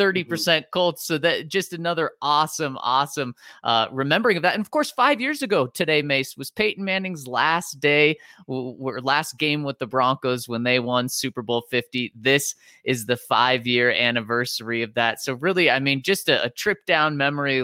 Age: 30-49